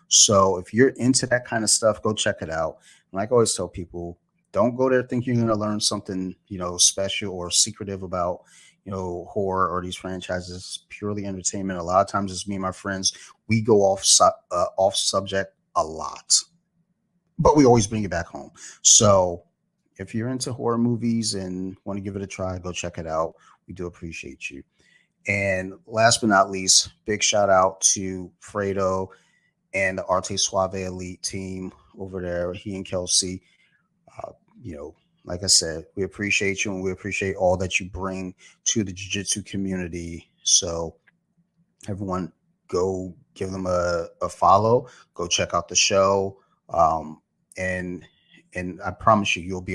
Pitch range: 90-105 Hz